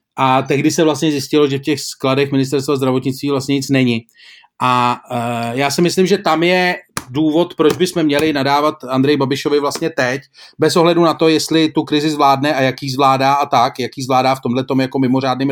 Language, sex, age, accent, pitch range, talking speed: Czech, male, 30-49, native, 140-165 Hz, 195 wpm